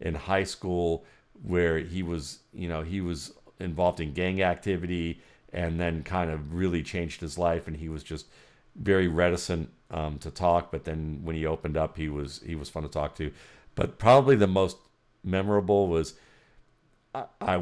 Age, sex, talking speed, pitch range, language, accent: 50-69, male, 180 wpm, 80-95 Hz, English, American